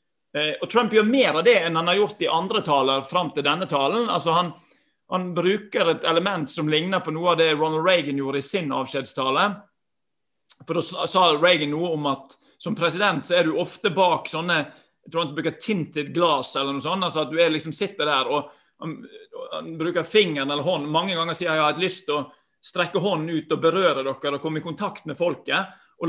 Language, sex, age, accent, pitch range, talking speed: English, male, 30-49, Swedish, 150-190 Hz, 205 wpm